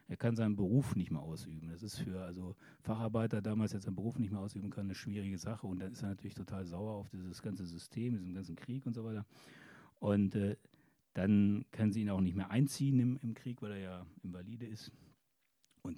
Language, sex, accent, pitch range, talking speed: German, male, German, 100-125 Hz, 220 wpm